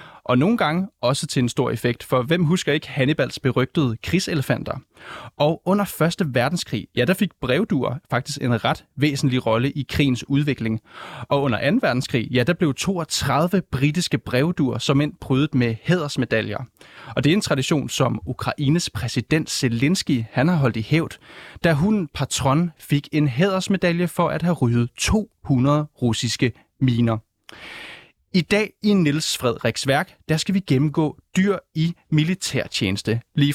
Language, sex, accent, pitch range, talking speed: Danish, male, native, 125-165 Hz, 155 wpm